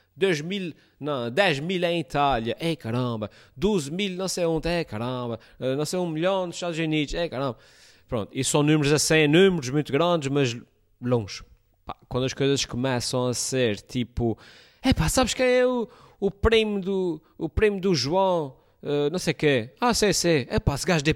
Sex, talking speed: male, 185 wpm